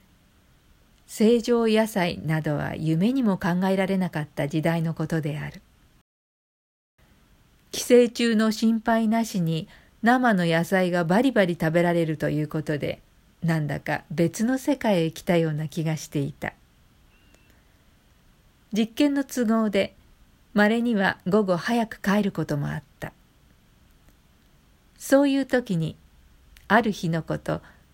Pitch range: 160-230 Hz